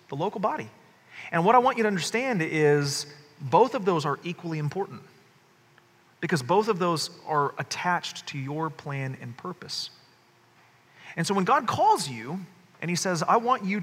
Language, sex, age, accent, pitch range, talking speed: English, male, 30-49, American, 145-185 Hz, 175 wpm